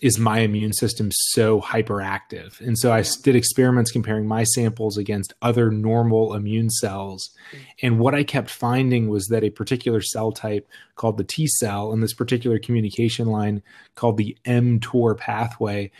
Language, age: English, 30-49